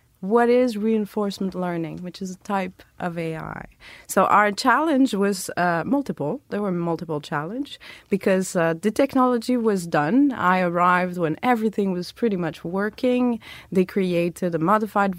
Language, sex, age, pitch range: English, female, 30-49, 170-230 Hz